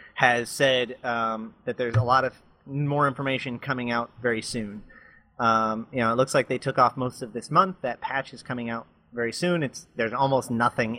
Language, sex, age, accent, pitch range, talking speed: English, male, 30-49, American, 120-140 Hz, 205 wpm